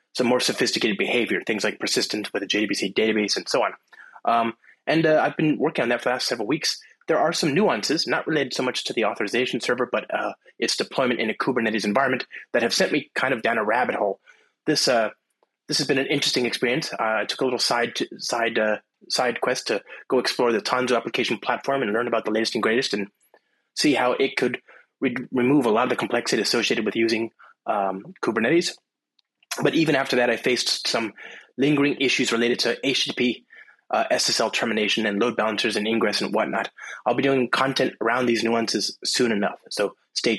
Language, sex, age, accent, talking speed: English, male, 20-39, American, 210 wpm